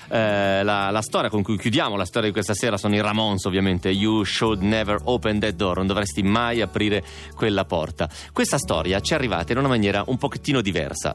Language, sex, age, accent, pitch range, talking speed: Italian, male, 30-49, native, 85-110 Hz, 210 wpm